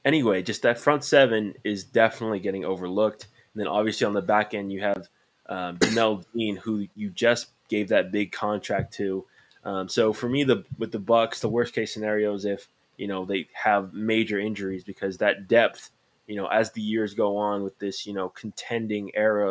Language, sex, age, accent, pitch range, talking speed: English, male, 20-39, American, 100-115 Hz, 200 wpm